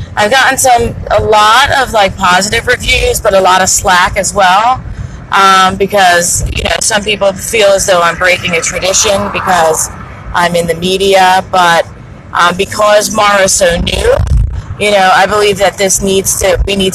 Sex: female